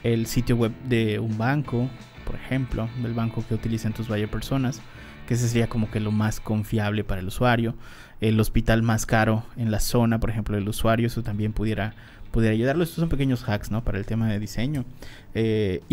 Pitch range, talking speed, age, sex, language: 110-125 Hz, 200 wpm, 20-39, male, Spanish